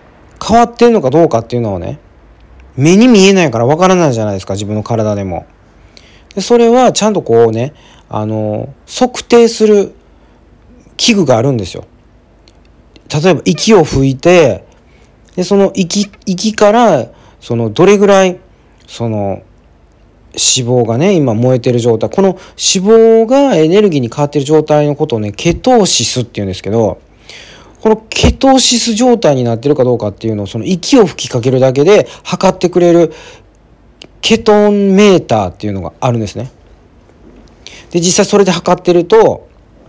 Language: Japanese